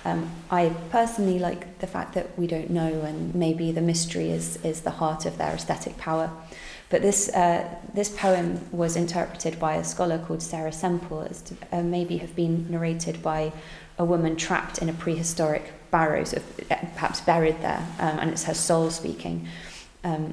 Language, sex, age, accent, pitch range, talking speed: English, female, 20-39, British, 155-175 Hz, 180 wpm